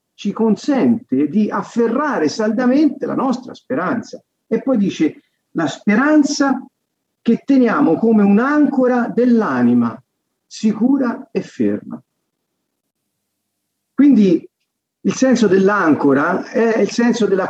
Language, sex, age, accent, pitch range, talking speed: Italian, male, 50-69, native, 170-240 Hz, 100 wpm